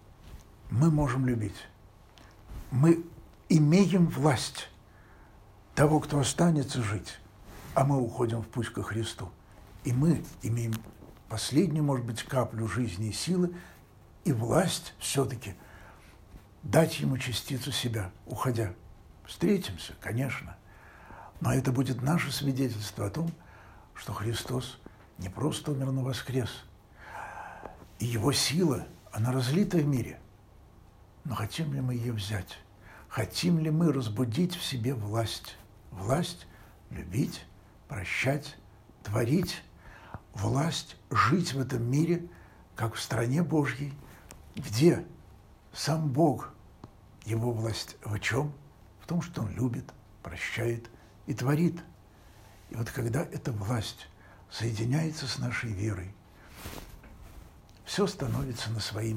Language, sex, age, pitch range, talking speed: Russian, male, 60-79, 100-140 Hz, 115 wpm